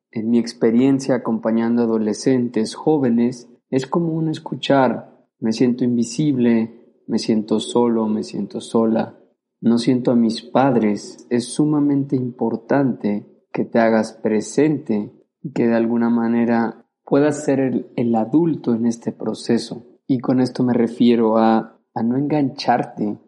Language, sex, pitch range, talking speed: Spanish, male, 115-130 Hz, 135 wpm